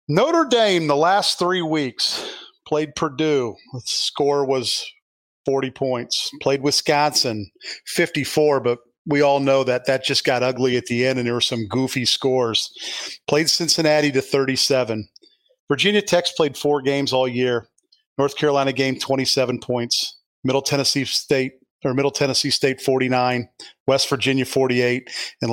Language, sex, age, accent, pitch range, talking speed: English, male, 40-59, American, 130-160 Hz, 145 wpm